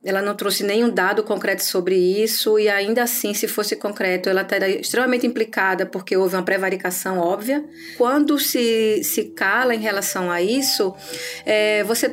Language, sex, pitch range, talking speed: Portuguese, female, 185-240 Hz, 160 wpm